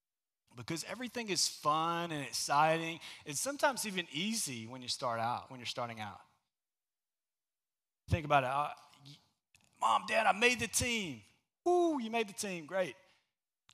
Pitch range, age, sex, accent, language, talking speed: 140-195 Hz, 30-49, male, American, English, 150 wpm